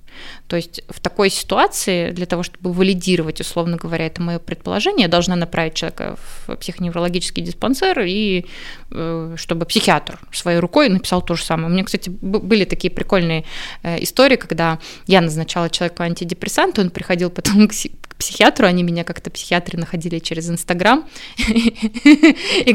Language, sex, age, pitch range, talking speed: Russian, female, 20-39, 170-225 Hz, 145 wpm